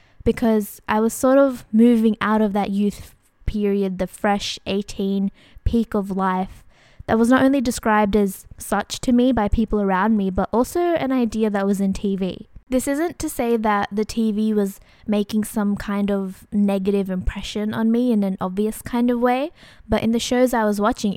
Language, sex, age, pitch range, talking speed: English, female, 10-29, 200-235 Hz, 190 wpm